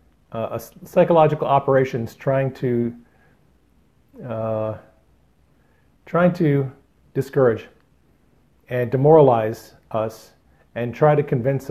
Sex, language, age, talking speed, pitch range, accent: male, English, 40-59, 80 wpm, 115-145 Hz, American